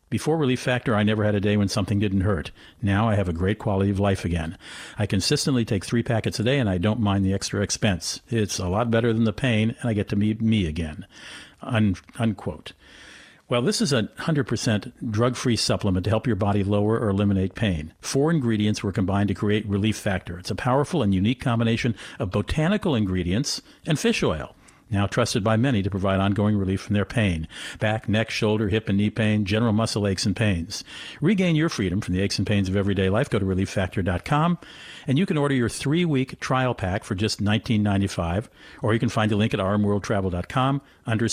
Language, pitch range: English, 100-120 Hz